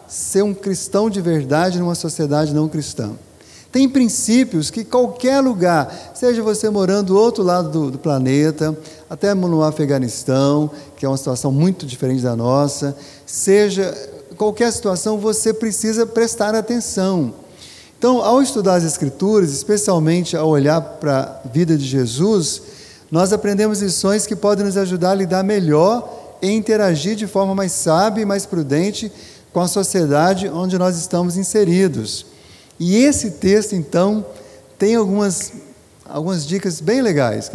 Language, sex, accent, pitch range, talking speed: Portuguese, male, Brazilian, 150-215 Hz, 145 wpm